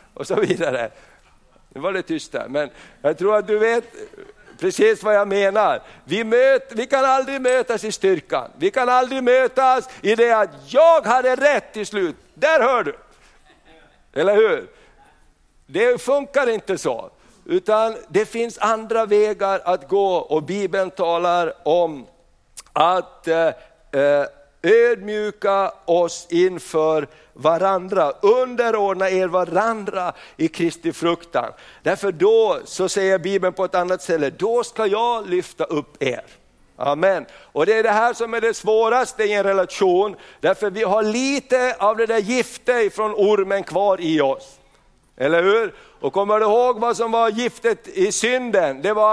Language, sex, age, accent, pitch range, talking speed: Swedish, male, 60-79, native, 190-255 Hz, 155 wpm